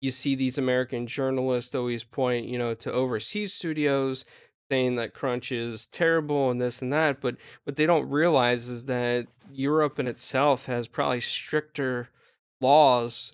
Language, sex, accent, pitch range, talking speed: English, male, American, 120-135 Hz, 160 wpm